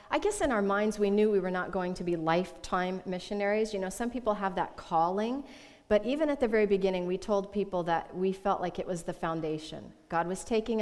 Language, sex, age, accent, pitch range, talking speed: English, female, 40-59, American, 160-205 Hz, 235 wpm